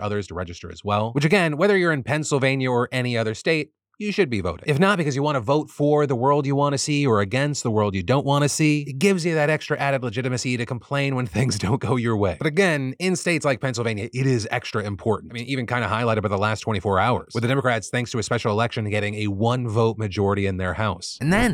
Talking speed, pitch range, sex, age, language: 265 wpm, 110-150 Hz, male, 30-49, English